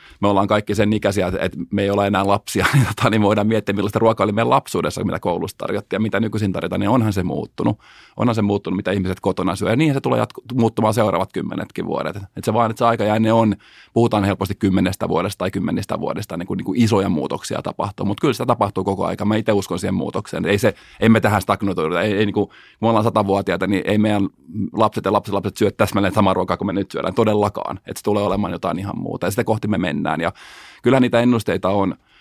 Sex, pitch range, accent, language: male, 95-110 Hz, native, Finnish